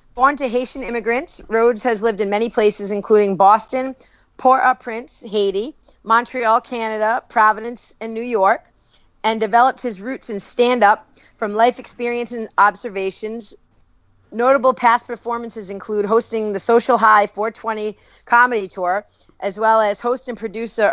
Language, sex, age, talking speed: English, female, 40-59, 140 wpm